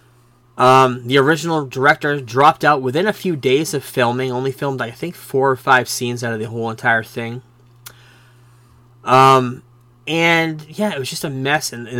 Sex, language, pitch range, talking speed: male, English, 120-135 Hz, 180 wpm